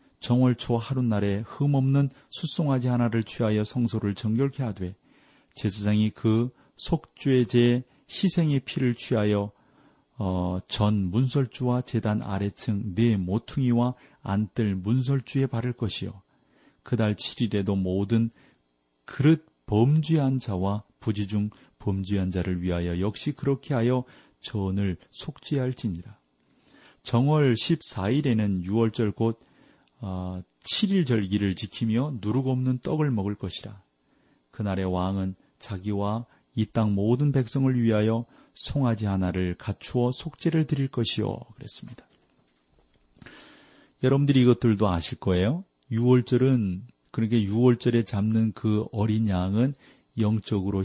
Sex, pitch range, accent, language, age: male, 100-125 Hz, native, Korean, 40-59